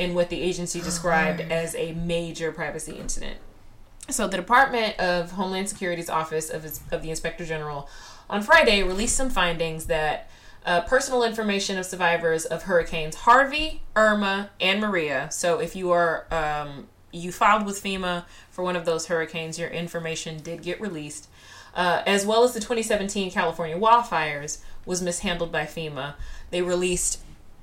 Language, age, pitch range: English, 20-39, 155-195 Hz